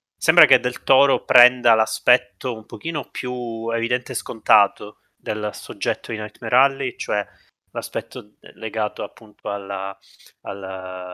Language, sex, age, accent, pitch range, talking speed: Italian, male, 20-39, native, 105-125 Hz, 125 wpm